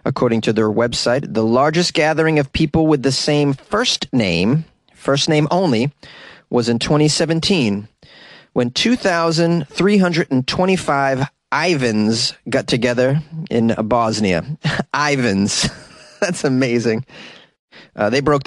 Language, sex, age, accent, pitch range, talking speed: English, male, 30-49, American, 125-170 Hz, 105 wpm